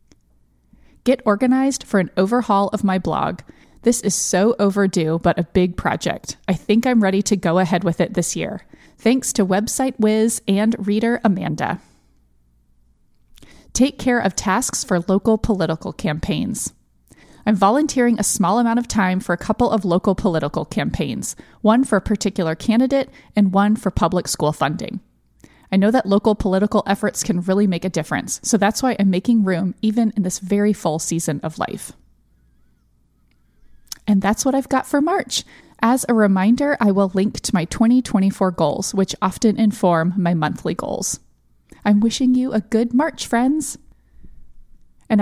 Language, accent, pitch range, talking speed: English, American, 170-225 Hz, 165 wpm